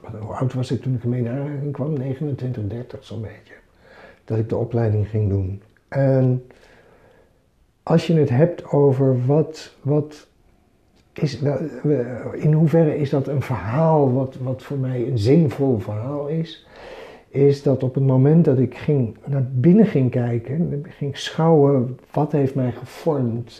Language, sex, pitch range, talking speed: Dutch, male, 125-155 Hz, 155 wpm